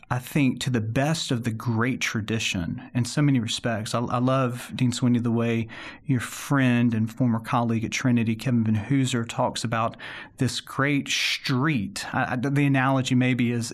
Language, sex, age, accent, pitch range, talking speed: English, male, 40-59, American, 120-150 Hz, 180 wpm